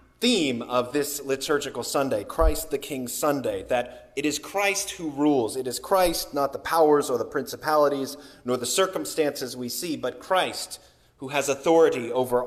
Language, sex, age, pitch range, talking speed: English, male, 30-49, 125-190 Hz, 170 wpm